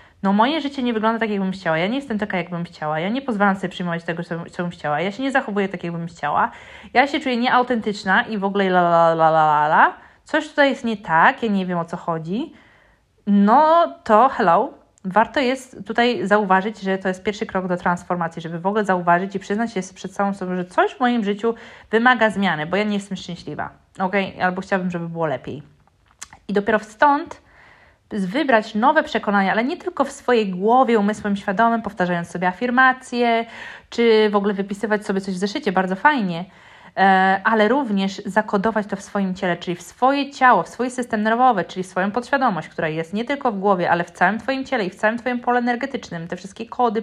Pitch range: 185-240 Hz